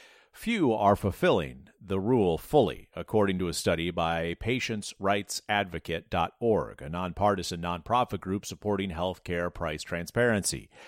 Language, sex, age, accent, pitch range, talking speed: English, male, 50-69, American, 95-130 Hz, 115 wpm